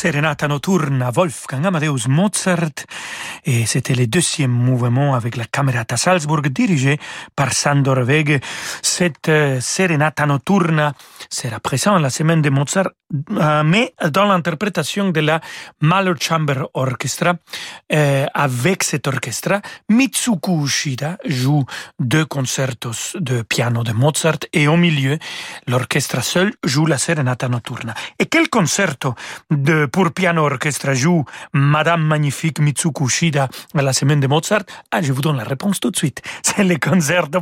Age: 40-59